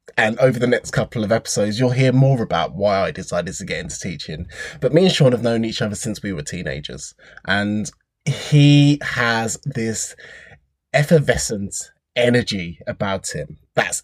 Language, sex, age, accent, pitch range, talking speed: English, male, 20-39, British, 105-140 Hz, 165 wpm